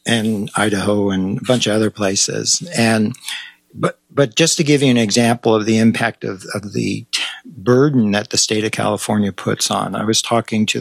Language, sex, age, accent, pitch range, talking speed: English, male, 50-69, American, 100-115 Hz, 195 wpm